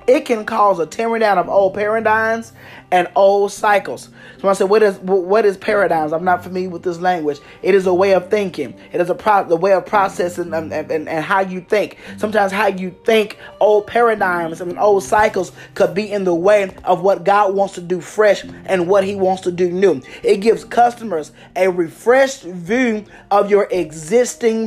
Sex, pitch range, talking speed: male, 175-210 Hz, 200 wpm